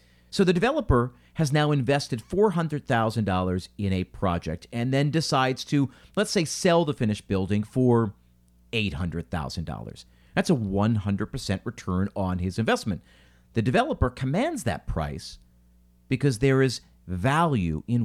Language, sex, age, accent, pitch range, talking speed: English, male, 40-59, American, 95-135 Hz, 130 wpm